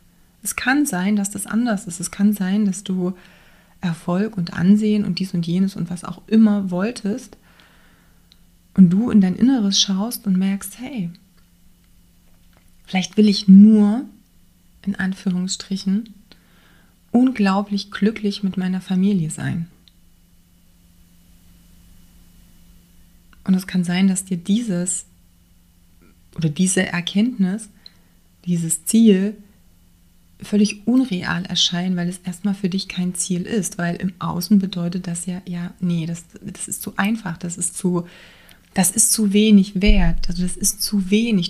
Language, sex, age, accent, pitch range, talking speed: German, female, 30-49, German, 170-205 Hz, 135 wpm